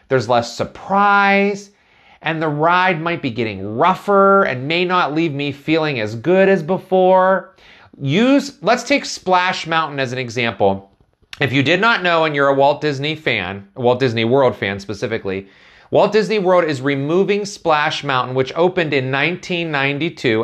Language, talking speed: English, 160 wpm